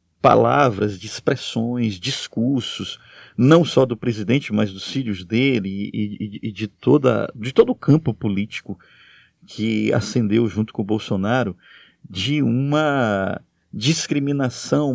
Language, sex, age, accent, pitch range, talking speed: Portuguese, male, 50-69, Brazilian, 105-130 Hz, 125 wpm